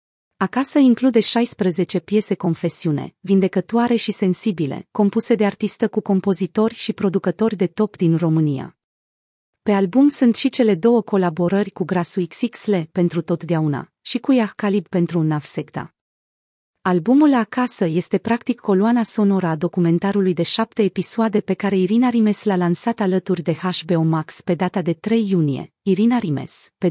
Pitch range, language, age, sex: 175-220 Hz, Romanian, 30-49, female